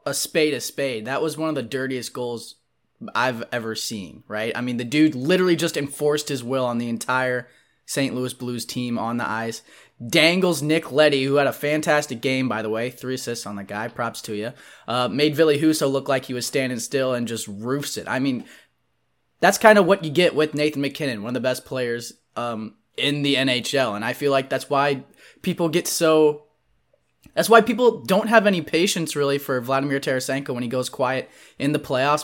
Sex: male